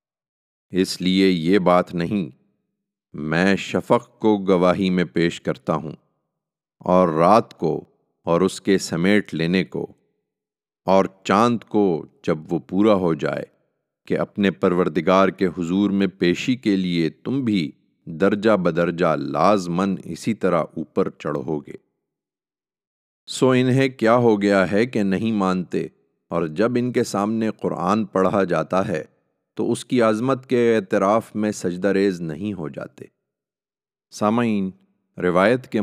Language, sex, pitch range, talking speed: Urdu, male, 90-105 Hz, 135 wpm